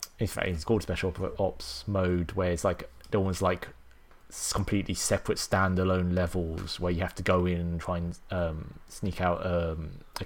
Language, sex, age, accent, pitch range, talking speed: English, male, 20-39, British, 85-95 Hz, 180 wpm